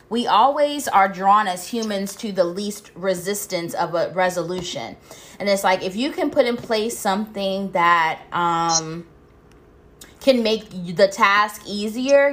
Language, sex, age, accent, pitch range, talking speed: English, female, 20-39, American, 180-215 Hz, 145 wpm